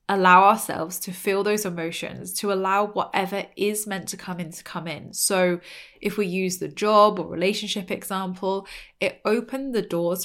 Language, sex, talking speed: English, female, 175 wpm